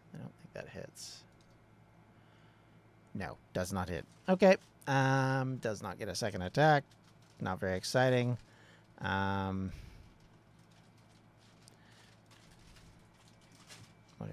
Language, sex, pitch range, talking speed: English, male, 90-115 Hz, 90 wpm